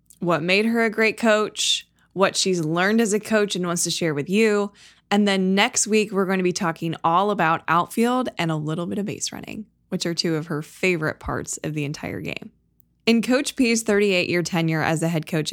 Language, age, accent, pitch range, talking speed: English, 20-39, American, 170-220 Hz, 220 wpm